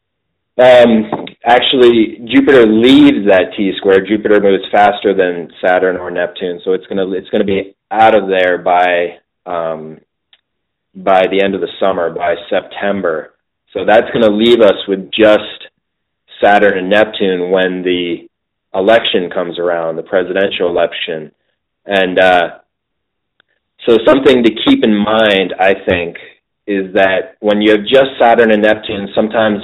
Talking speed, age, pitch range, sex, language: 150 wpm, 30-49, 95-110 Hz, male, English